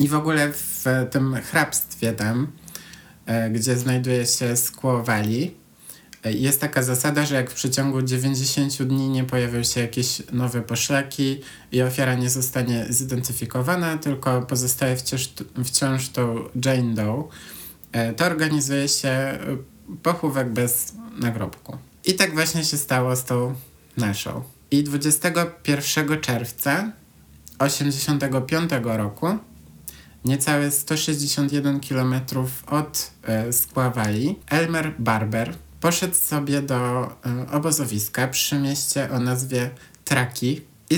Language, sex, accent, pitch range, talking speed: Polish, male, native, 120-145 Hz, 115 wpm